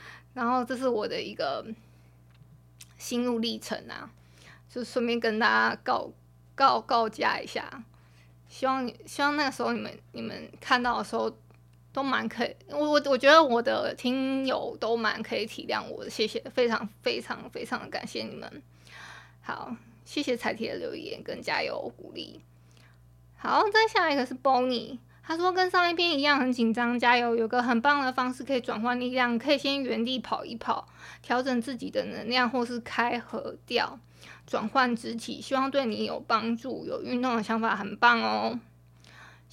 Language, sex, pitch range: Chinese, female, 215-270 Hz